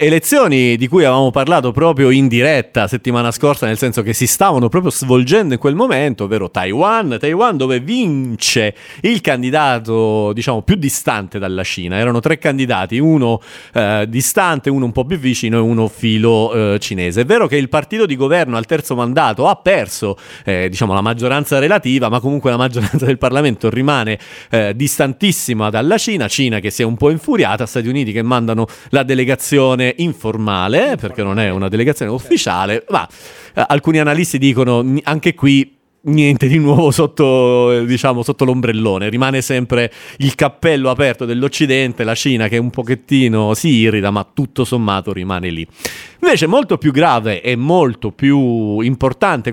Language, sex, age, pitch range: Italian, male, 40-59, 115-140 Hz